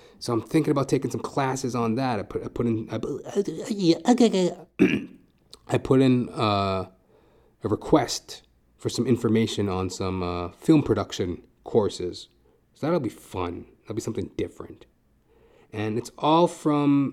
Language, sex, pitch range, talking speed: English, male, 95-125 Hz, 155 wpm